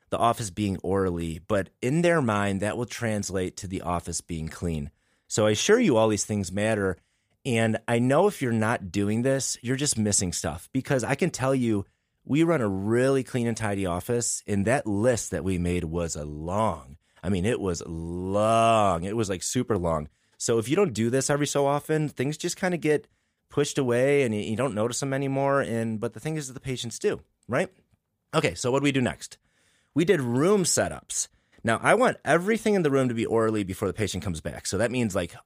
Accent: American